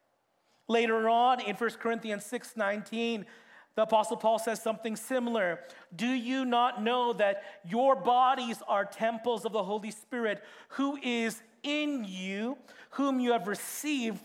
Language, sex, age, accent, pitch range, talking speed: English, male, 40-59, American, 200-245 Hz, 145 wpm